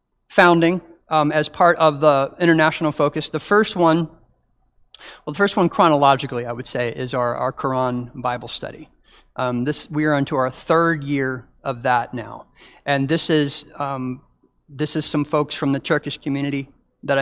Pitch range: 135-160 Hz